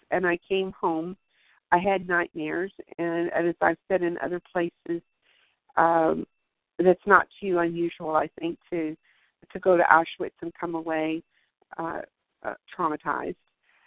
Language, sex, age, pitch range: English, female, 50-69, 170-195 Hz